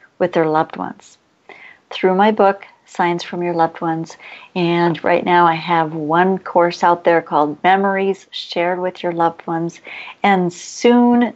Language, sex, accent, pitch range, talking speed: English, female, American, 170-205 Hz, 155 wpm